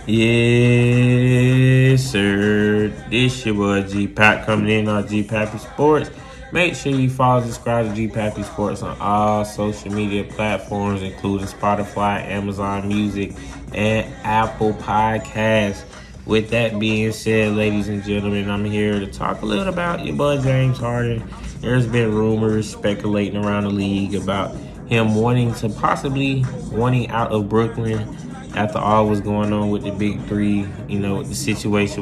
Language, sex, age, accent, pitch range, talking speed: English, male, 20-39, American, 100-120 Hz, 150 wpm